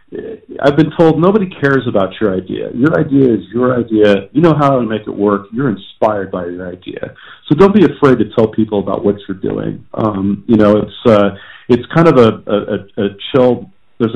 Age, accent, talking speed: 40-59, American, 210 wpm